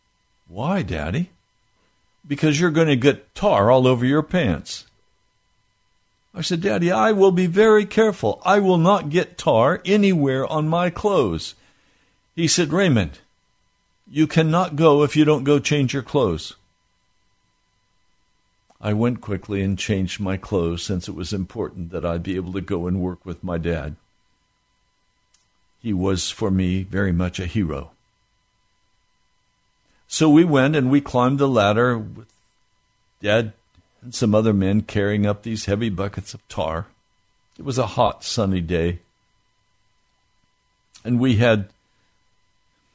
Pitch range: 95-125 Hz